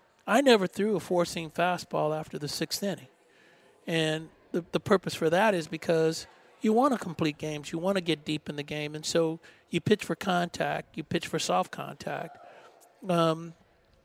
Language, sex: English, male